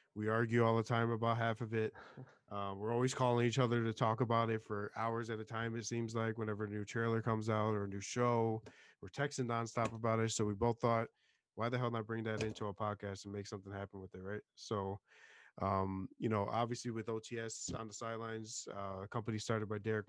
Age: 20-39